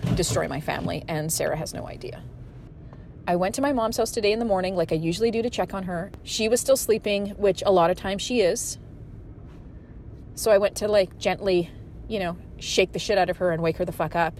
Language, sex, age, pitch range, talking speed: English, female, 30-49, 165-255 Hz, 240 wpm